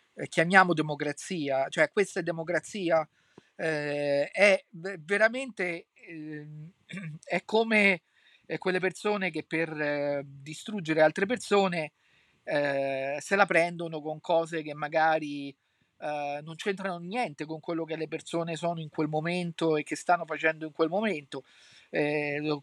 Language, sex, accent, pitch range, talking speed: Italian, male, native, 150-185 Hz, 125 wpm